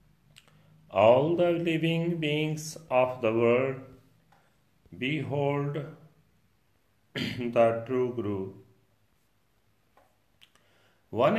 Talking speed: 65 wpm